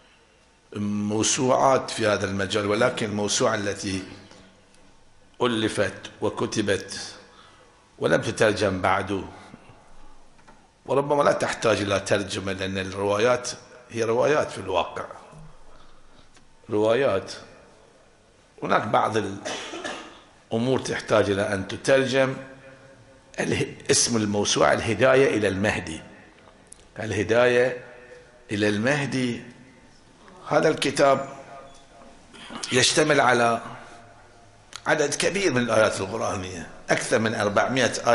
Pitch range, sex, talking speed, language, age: 100-130 Hz, male, 80 wpm, Arabic, 50-69